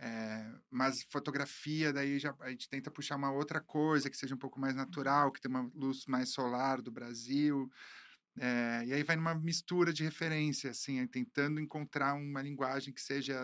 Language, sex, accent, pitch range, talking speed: Portuguese, male, Brazilian, 125-155 Hz, 190 wpm